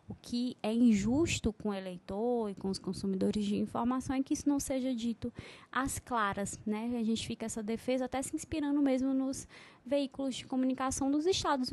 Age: 20-39